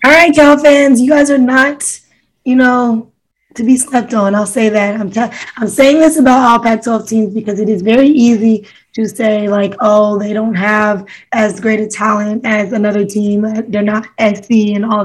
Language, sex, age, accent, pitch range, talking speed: English, female, 10-29, American, 215-245 Hz, 200 wpm